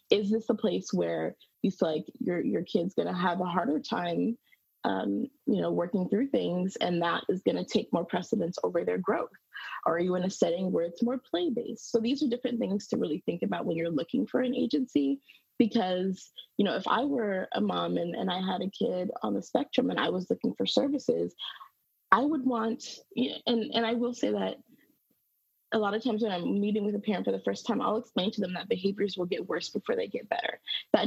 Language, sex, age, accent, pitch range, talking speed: English, female, 20-39, American, 190-255 Hz, 230 wpm